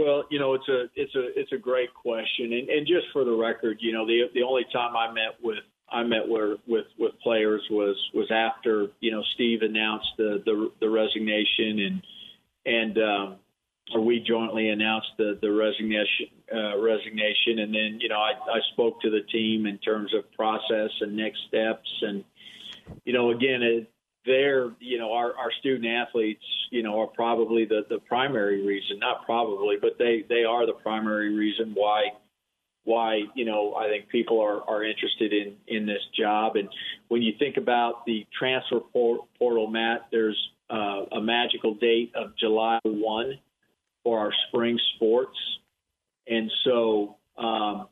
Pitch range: 110-120 Hz